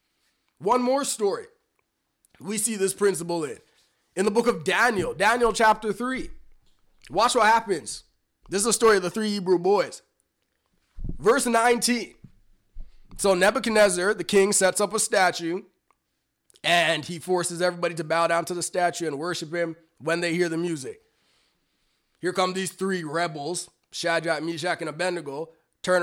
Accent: American